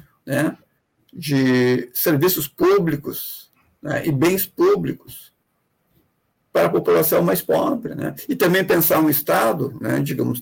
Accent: Brazilian